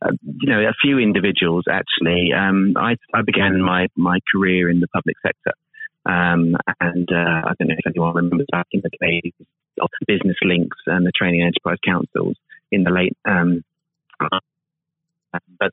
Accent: British